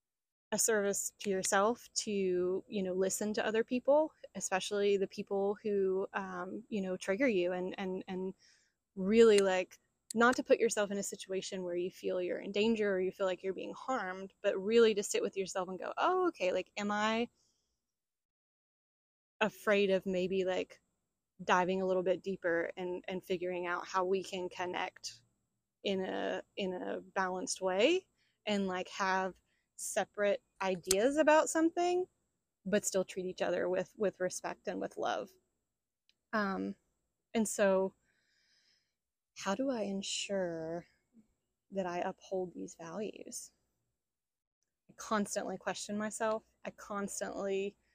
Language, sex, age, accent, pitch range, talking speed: English, female, 20-39, American, 185-215 Hz, 145 wpm